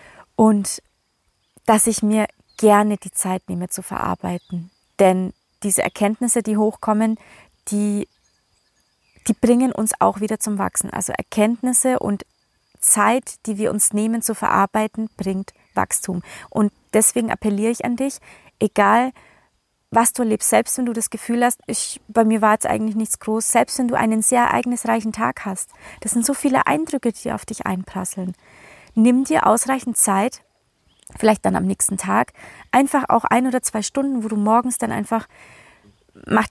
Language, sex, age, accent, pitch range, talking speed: German, female, 30-49, German, 205-240 Hz, 160 wpm